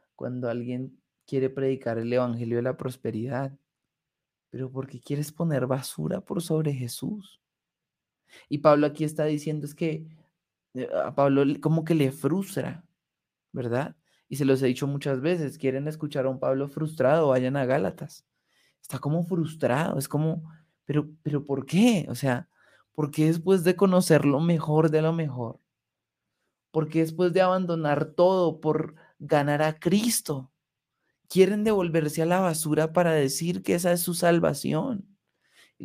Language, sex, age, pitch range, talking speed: Spanish, male, 20-39, 140-170 Hz, 150 wpm